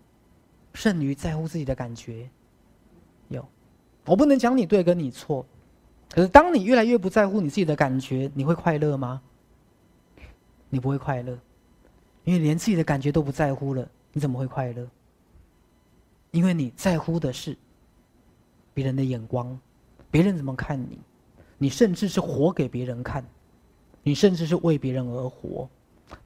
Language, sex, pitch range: Chinese, male, 130-180 Hz